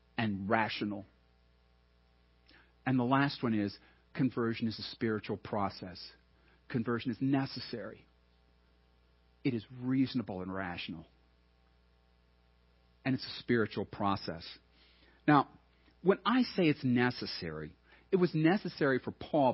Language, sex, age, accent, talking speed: English, male, 50-69, American, 110 wpm